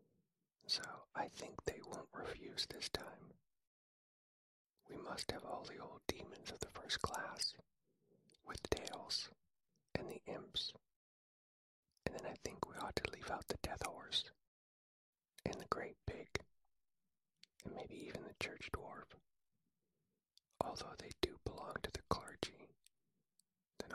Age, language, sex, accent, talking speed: 40-59, English, male, American, 135 wpm